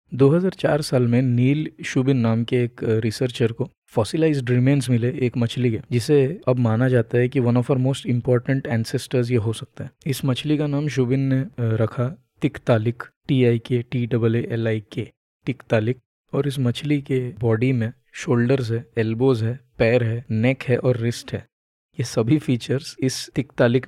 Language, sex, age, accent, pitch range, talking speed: Hindi, male, 20-39, native, 115-130 Hz, 180 wpm